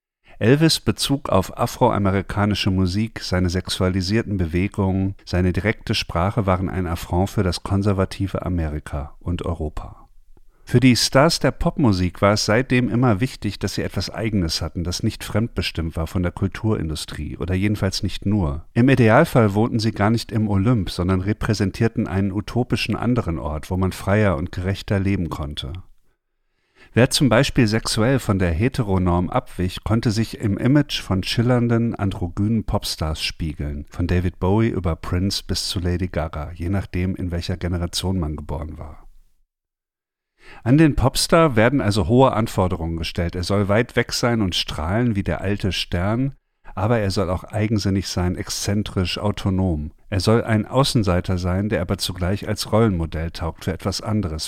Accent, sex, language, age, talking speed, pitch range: German, male, German, 50-69, 155 wpm, 90-110 Hz